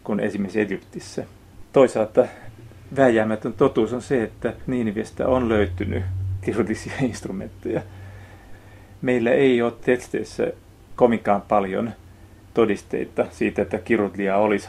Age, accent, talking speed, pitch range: 40-59, native, 100 wpm, 100-120 Hz